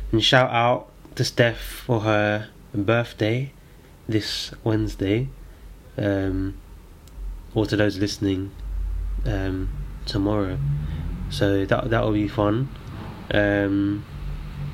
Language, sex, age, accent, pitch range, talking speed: English, male, 20-39, British, 100-120 Hz, 95 wpm